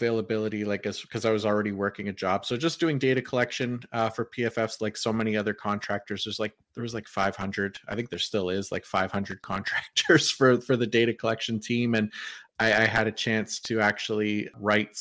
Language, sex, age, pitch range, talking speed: English, male, 30-49, 105-120 Hz, 205 wpm